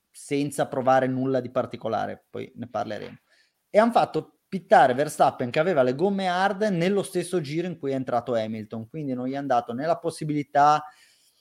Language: Italian